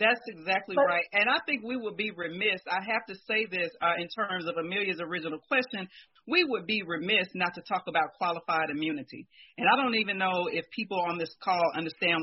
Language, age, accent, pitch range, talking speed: English, 40-59, American, 170-215 Hz, 210 wpm